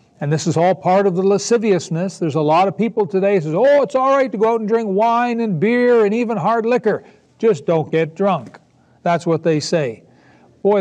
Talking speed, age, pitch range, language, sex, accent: 230 wpm, 60-79, 165-230 Hz, English, male, American